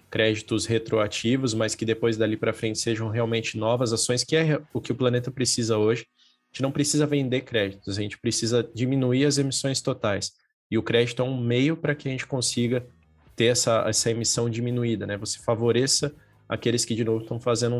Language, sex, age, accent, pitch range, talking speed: Portuguese, male, 20-39, Brazilian, 110-135 Hz, 195 wpm